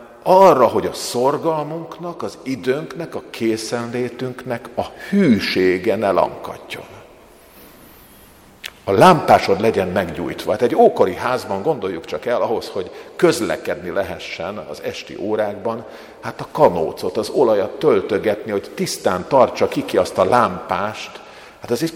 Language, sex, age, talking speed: Hungarian, male, 50-69, 125 wpm